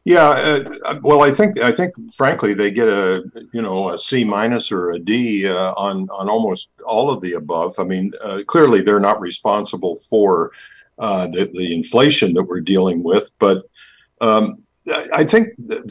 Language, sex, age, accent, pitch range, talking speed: English, male, 50-69, American, 100-130 Hz, 180 wpm